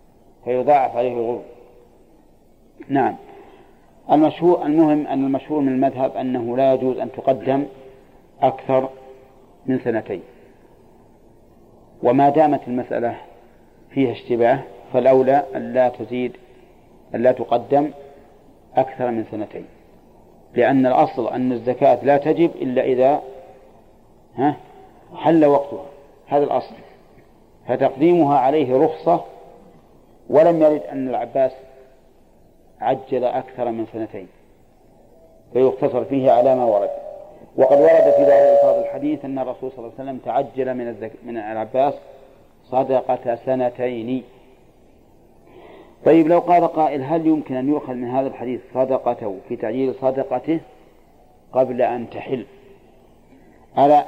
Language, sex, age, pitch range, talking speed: Arabic, male, 40-59, 125-140 Hz, 105 wpm